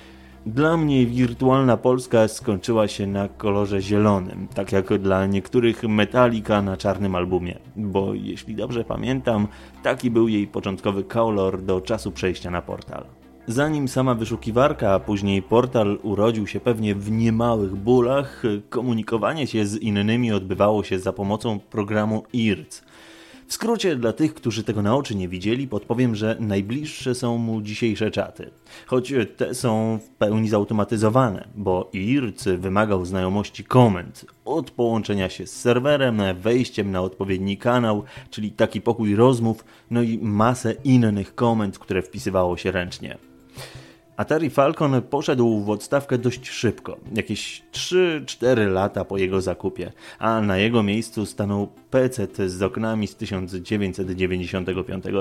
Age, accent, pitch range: 20-39, native, 95-120 Hz